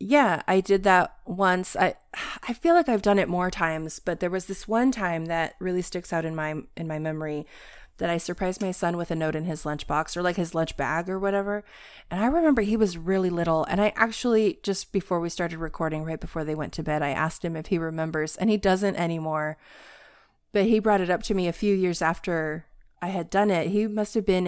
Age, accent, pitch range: 20-39, American, 165-210 Hz